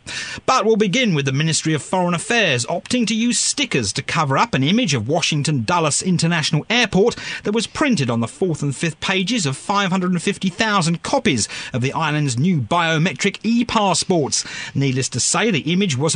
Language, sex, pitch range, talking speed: English, male, 140-210 Hz, 180 wpm